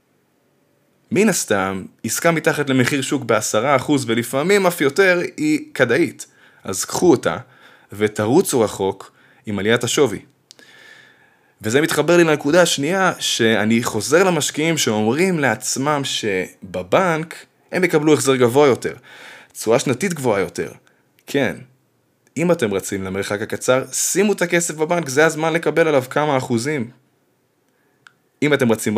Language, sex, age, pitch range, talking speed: Hebrew, male, 20-39, 110-160 Hz, 125 wpm